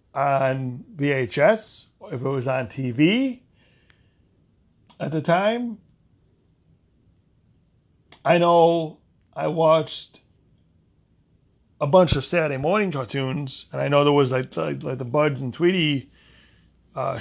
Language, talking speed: English, 120 wpm